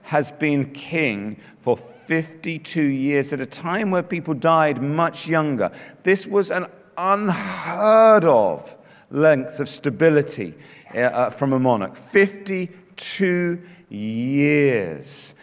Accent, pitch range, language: British, 145-190 Hz, English